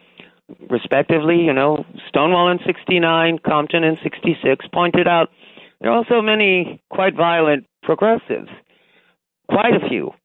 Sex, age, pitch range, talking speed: male, 50-69, 160-190 Hz, 125 wpm